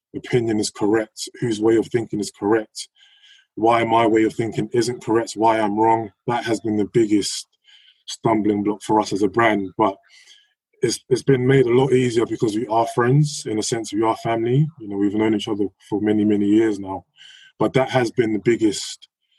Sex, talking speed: male, 205 wpm